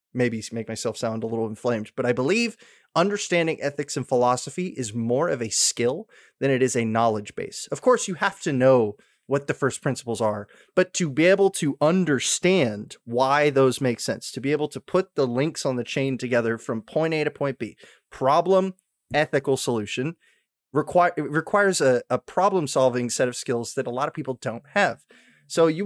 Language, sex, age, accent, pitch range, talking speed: English, male, 20-39, American, 120-160 Hz, 195 wpm